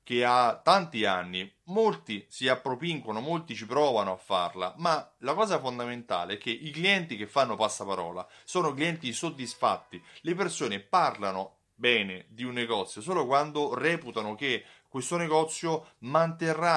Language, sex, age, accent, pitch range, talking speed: Italian, male, 30-49, native, 110-145 Hz, 145 wpm